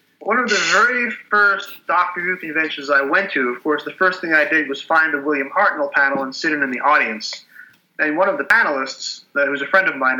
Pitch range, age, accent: 145-190 Hz, 30-49, American